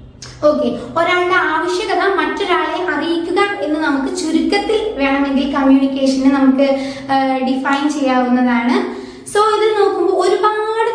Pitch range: 270-350 Hz